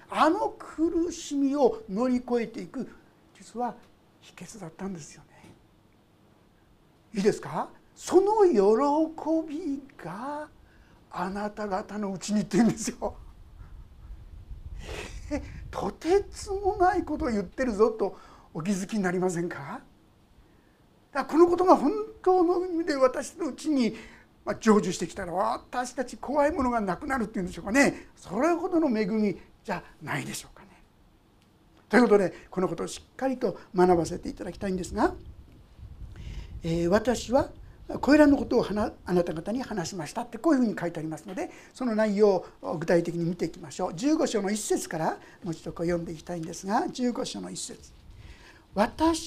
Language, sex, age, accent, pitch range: Japanese, male, 60-79, native, 175-290 Hz